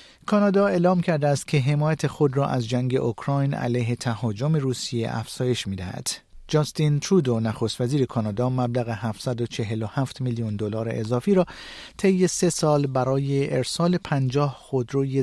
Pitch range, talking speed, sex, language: 120-160 Hz, 135 wpm, male, Persian